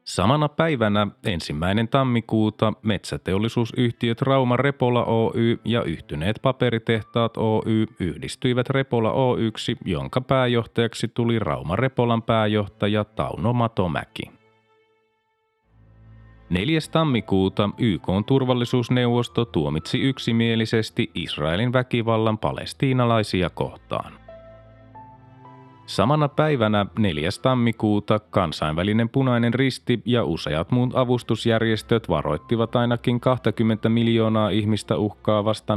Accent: native